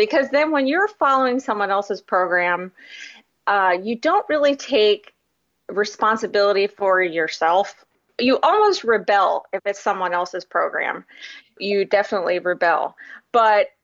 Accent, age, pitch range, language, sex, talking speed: American, 30-49, 200-260 Hz, English, female, 120 wpm